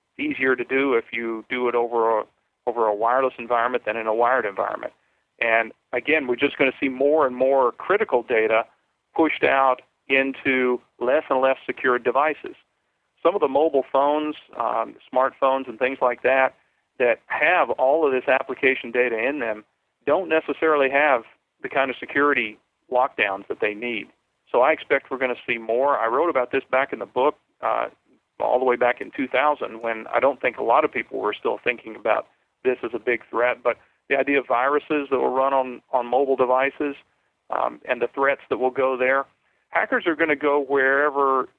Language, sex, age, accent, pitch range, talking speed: English, male, 40-59, American, 120-140 Hz, 195 wpm